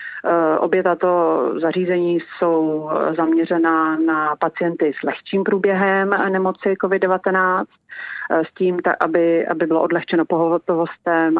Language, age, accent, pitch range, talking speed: Czech, 40-59, native, 160-180 Hz, 105 wpm